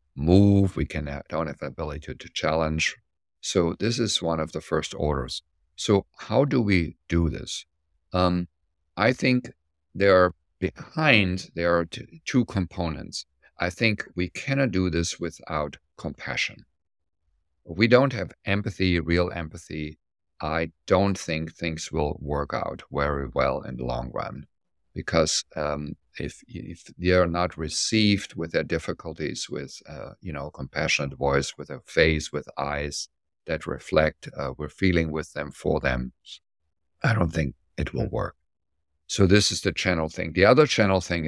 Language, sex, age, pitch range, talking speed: English, male, 50-69, 75-90 Hz, 160 wpm